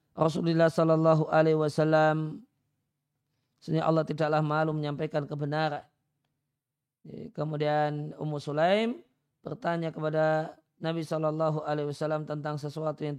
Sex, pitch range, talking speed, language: male, 150-165 Hz, 100 wpm, Indonesian